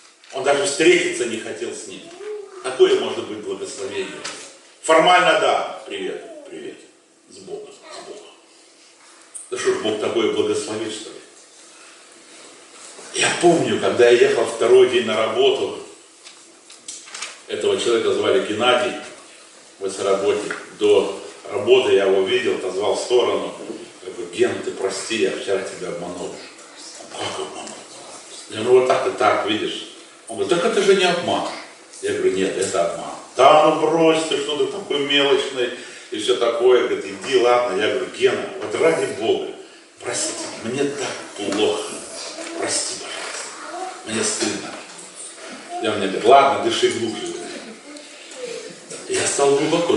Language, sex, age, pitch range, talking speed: Russian, male, 40-59, 345-405 Hz, 140 wpm